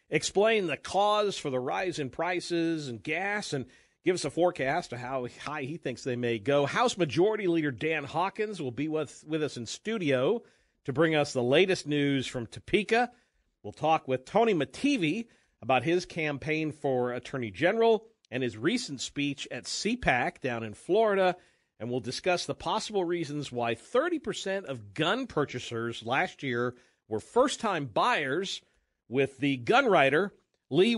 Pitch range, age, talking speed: 125-175 Hz, 50-69, 165 wpm